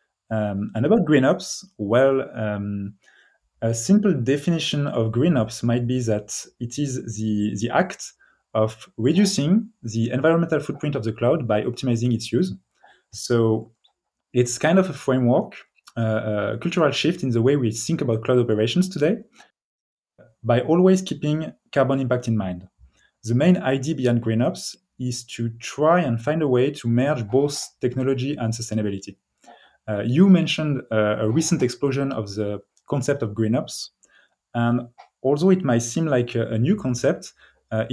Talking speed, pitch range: 160 wpm, 115-145 Hz